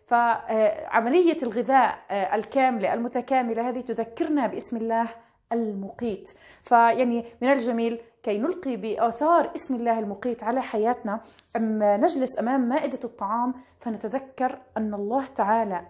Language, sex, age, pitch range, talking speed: Arabic, female, 30-49, 220-265 Hz, 105 wpm